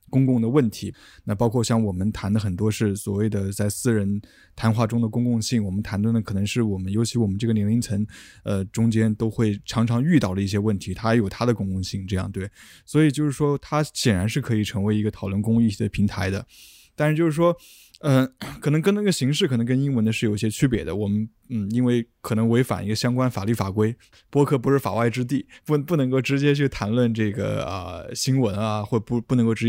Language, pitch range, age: Chinese, 105-125 Hz, 20-39